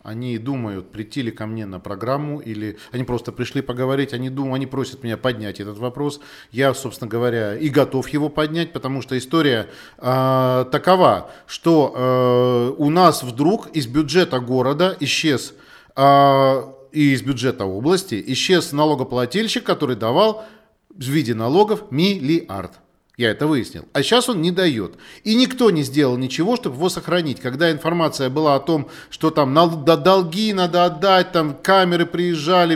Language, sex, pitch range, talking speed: Russian, male, 130-170 Hz, 150 wpm